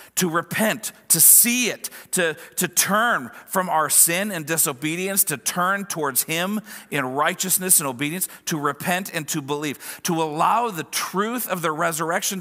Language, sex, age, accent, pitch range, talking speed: English, male, 50-69, American, 150-200 Hz, 160 wpm